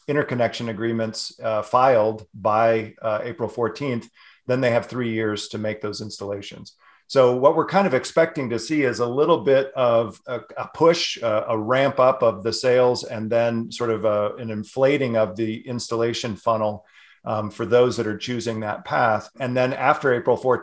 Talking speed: 180 wpm